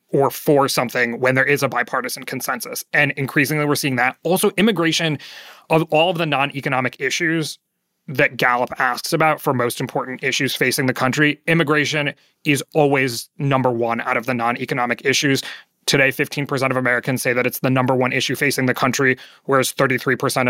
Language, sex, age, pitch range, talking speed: English, male, 30-49, 125-150 Hz, 175 wpm